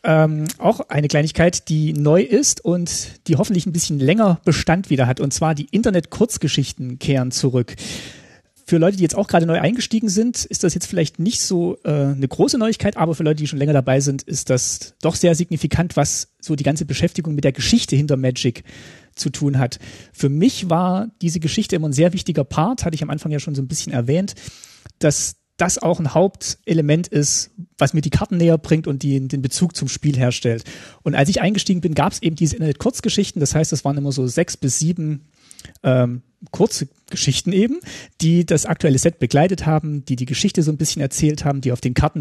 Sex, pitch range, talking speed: male, 135-175 Hz, 210 wpm